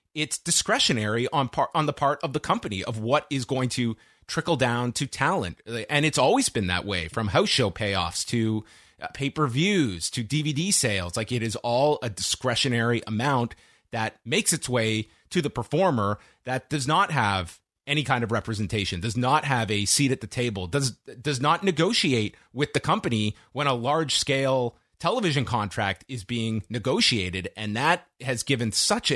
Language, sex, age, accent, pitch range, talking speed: English, male, 30-49, American, 105-140 Hz, 175 wpm